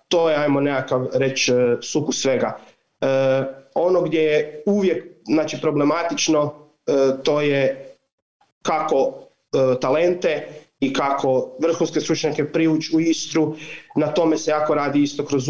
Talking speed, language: 135 wpm, Croatian